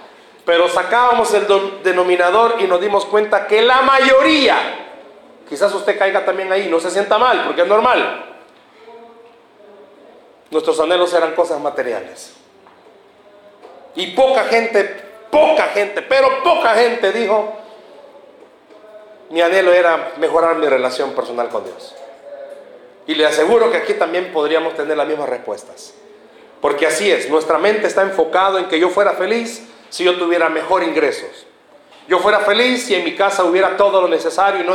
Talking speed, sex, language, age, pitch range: 150 wpm, male, Spanish, 40-59, 190-240 Hz